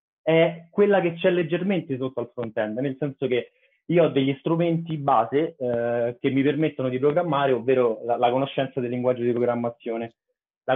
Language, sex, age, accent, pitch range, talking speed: Italian, male, 30-49, native, 130-165 Hz, 180 wpm